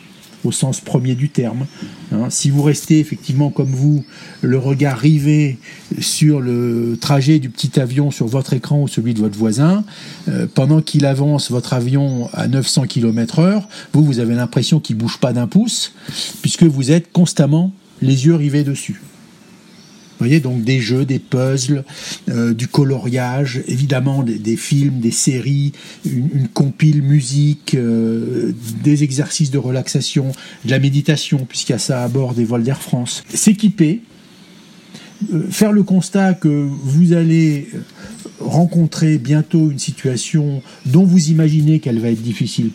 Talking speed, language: 160 wpm, French